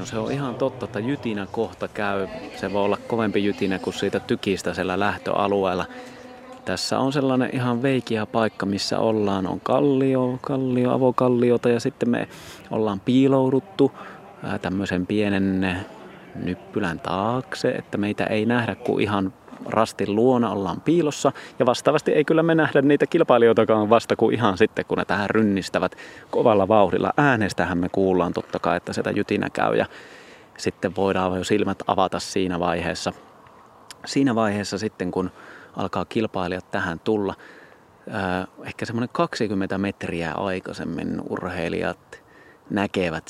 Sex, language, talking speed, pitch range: male, Finnish, 135 wpm, 95-125 Hz